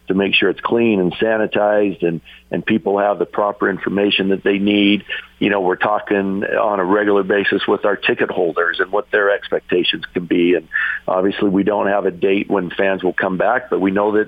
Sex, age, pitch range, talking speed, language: male, 50-69, 95-105 Hz, 215 wpm, English